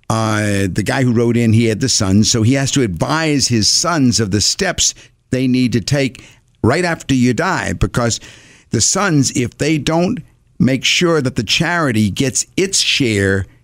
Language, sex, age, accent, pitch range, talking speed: English, male, 50-69, American, 105-135 Hz, 185 wpm